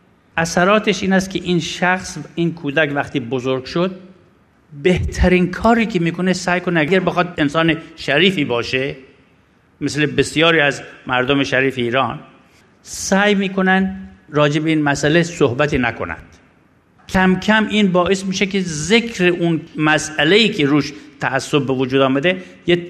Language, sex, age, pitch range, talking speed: Persian, male, 60-79, 130-175 Hz, 135 wpm